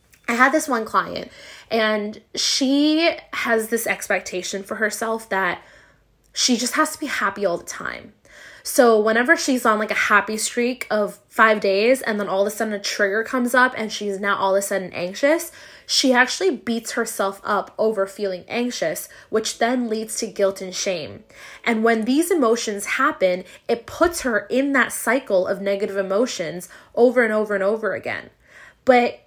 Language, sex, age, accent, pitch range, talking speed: English, female, 20-39, American, 200-255 Hz, 180 wpm